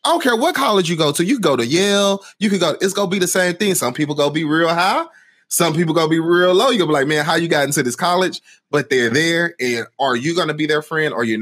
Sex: male